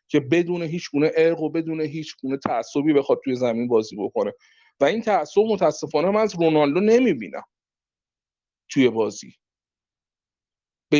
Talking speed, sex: 140 wpm, male